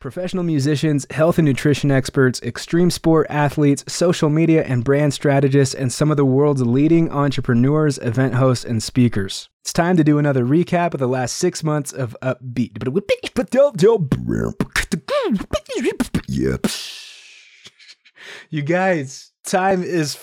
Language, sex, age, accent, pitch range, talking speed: English, male, 20-39, American, 120-150 Hz, 125 wpm